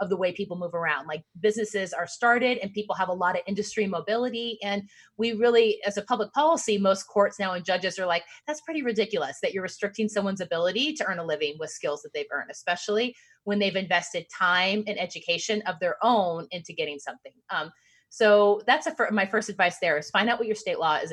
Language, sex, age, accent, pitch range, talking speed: English, female, 30-49, American, 175-225 Hz, 220 wpm